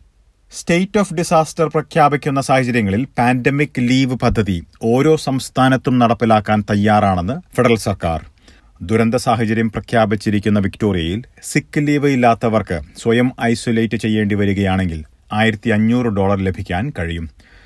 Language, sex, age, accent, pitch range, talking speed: Malayalam, male, 30-49, native, 100-125 Hz, 95 wpm